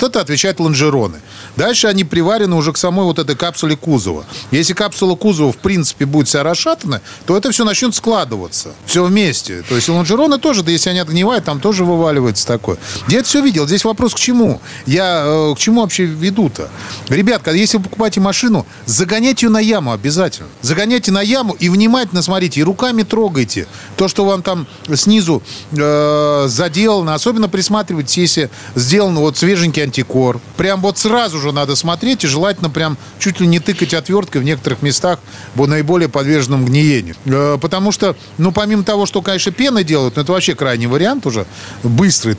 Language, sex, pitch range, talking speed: Russian, male, 130-195 Hz, 175 wpm